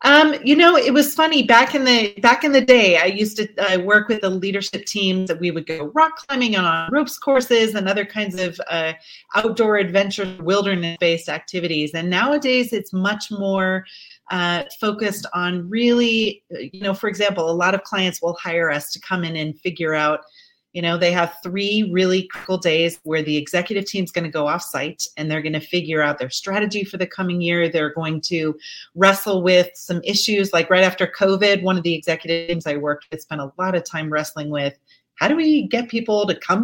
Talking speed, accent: 210 wpm, American